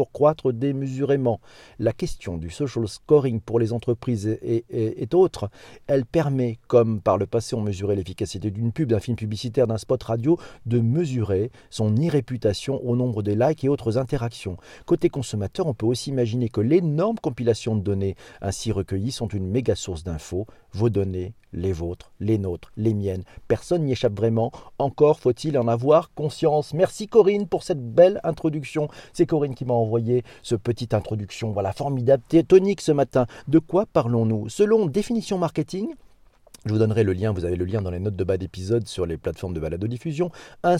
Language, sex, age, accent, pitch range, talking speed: French, male, 40-59, French, 110-150 Hz, 185 wpm